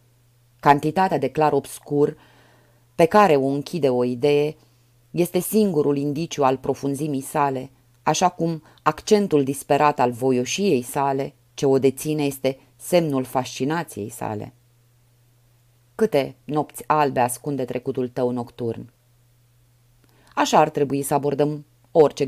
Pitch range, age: 120-150 Hz, 30-49